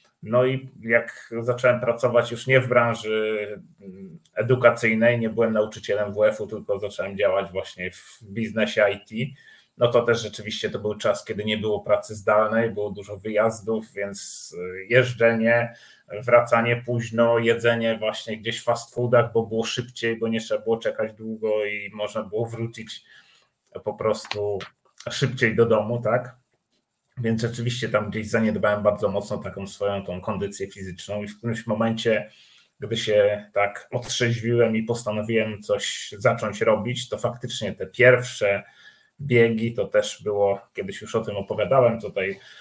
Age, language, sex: 30-49, Polish, male